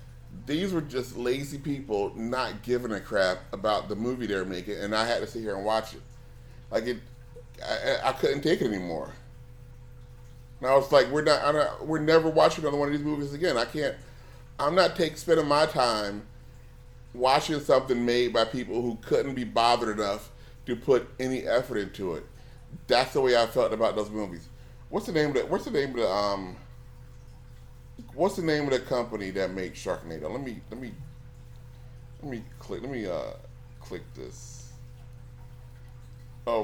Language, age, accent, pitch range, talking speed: English, 30-49, American, 105-135 Hz, 185 wpm